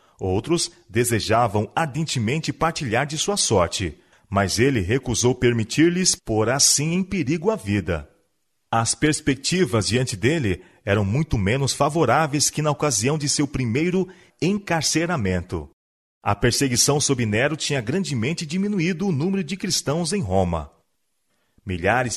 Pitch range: 110-160 Hz